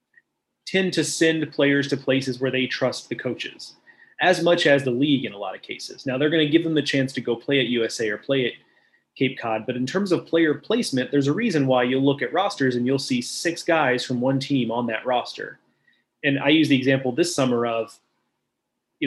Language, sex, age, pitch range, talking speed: English, male, 30-49, 125-155 Hz, 230 wpm